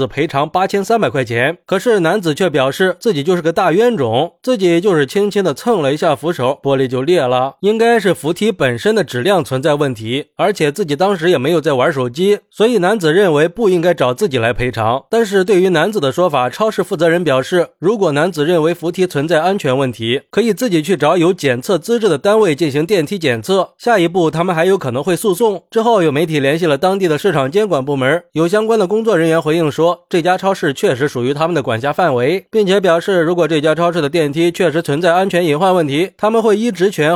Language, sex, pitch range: Chinese, male, 140-190 Hz